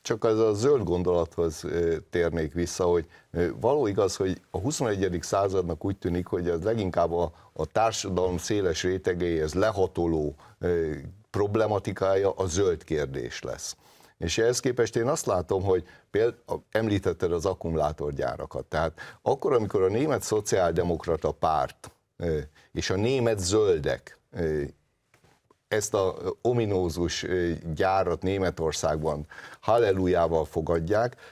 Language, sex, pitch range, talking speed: Hungarian, male, 90-115 Hz, 115 wpm